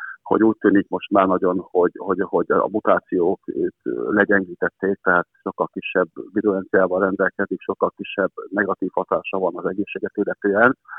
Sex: male